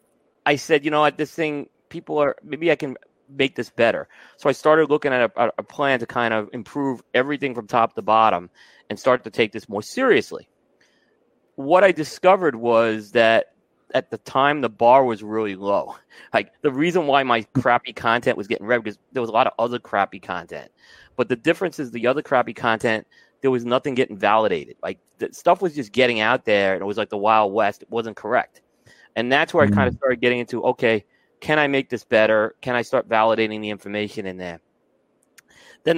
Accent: American